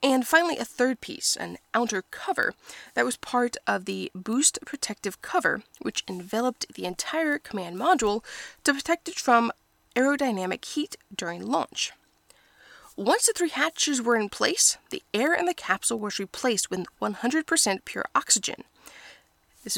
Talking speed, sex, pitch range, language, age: 150 wpm, female, 200-285 Hz, English, 20-39